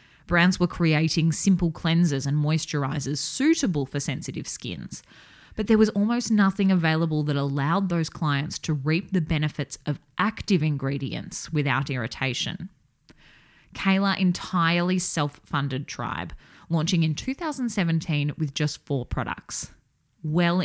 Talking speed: 120 wpm